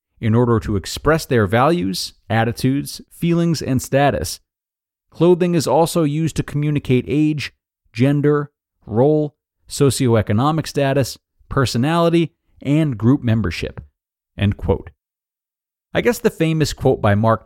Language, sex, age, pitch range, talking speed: English, male, 40-59, 105-150 Hz, 115 wpm